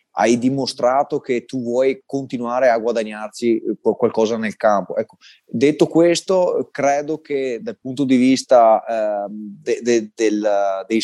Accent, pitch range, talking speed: native, 120-140 Hz, 120 wpm